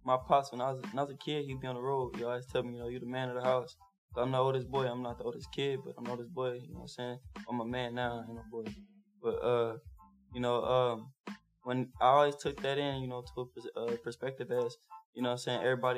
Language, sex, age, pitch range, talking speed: English, male, 10-29, 120-135 Hz, 290 wpm